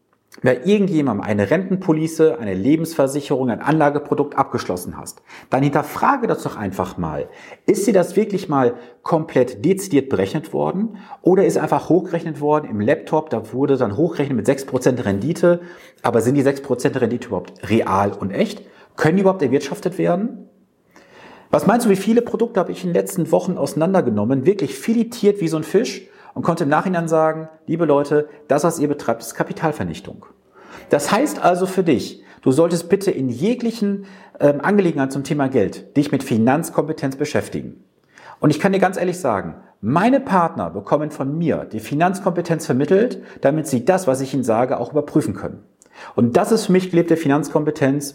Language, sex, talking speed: German, male, 170 wpm